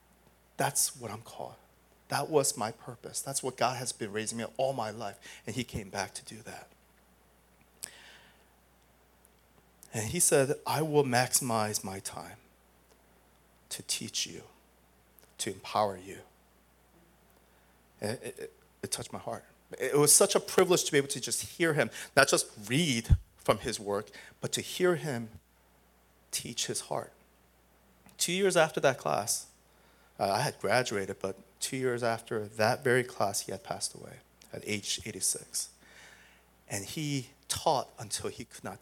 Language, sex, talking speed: English, male, 155 wpm